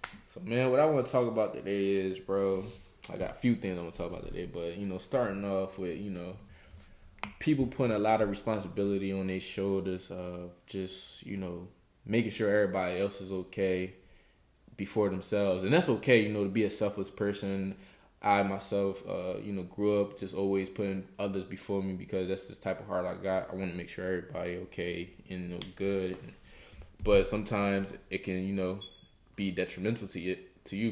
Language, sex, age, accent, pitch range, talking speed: English, male, 20-39, American, 95-100 Hz, 200 wpm